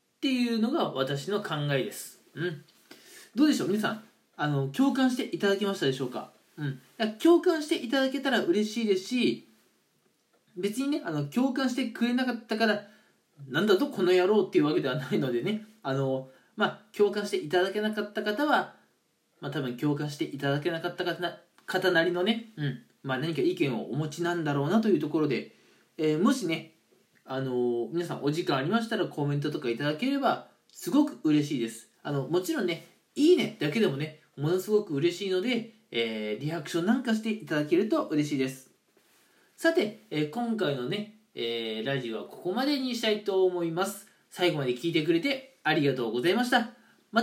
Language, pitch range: Japanese, 150-235 Hz